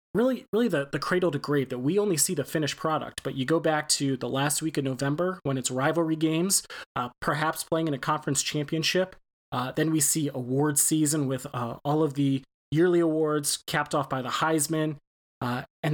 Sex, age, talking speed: male, 30-49, 205 wpm